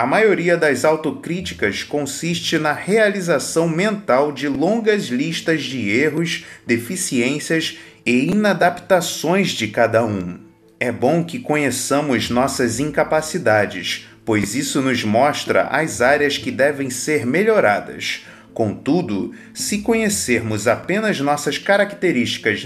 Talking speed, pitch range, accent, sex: 110 wpm, 130-190 Hz, Brazilian, male